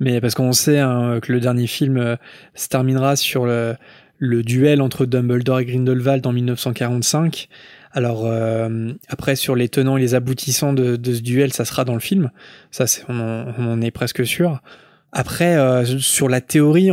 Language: French